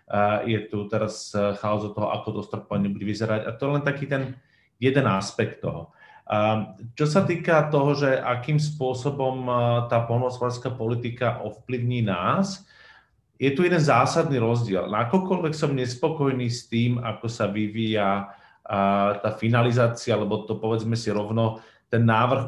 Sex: male